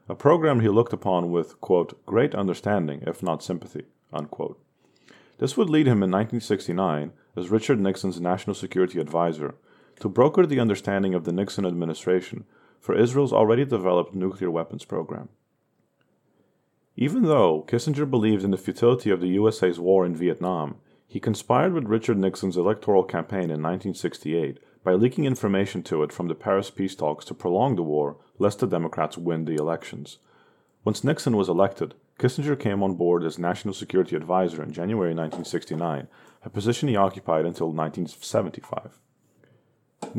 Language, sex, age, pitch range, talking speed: English, male, 40-59, 85-110 Hz, 155 wpm